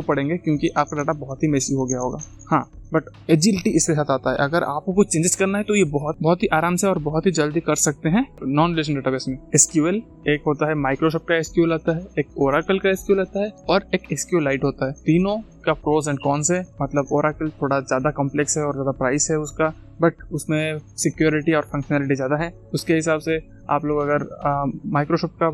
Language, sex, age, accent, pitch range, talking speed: Hindi, male, 20-39, native, 145-170 Hz, 155 wpm